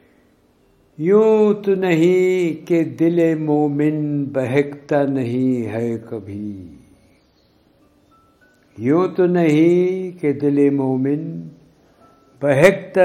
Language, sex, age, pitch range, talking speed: Urdu, male, 60-79, 105-155 Hz, 70 wpm